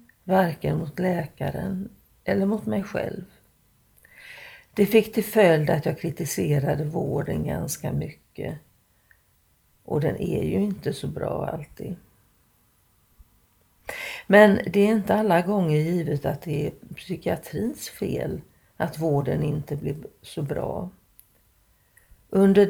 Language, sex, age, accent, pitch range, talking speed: Swedish, female, 50-69, native, 155-205 Hz, 115 wpm